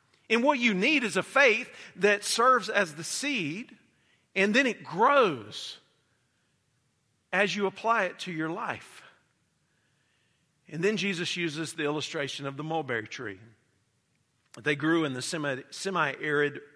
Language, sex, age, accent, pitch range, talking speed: English, male, 50-69, American, 125-165 Hz, 135 wpm